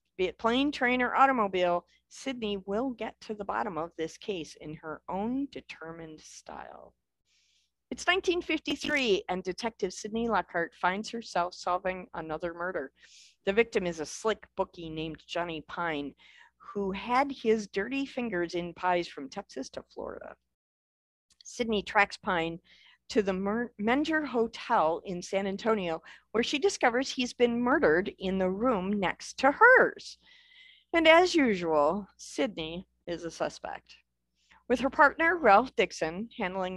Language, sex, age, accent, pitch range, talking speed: English, female, 50-69, American, 170-245 Hz, 140 wpm